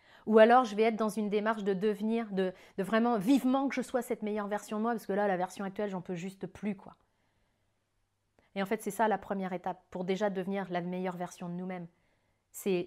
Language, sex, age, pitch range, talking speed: French, female, 30-49, 190-225 Hz, 235 wpm